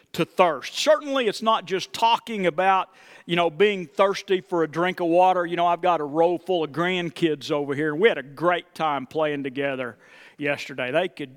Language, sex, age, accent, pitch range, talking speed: English, male, 50-69, American, 155-215 Hz, 200 wpm